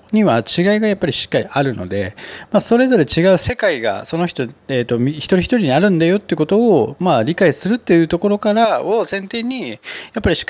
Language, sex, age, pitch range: Japanese, male, 20-39, 115-180 Hz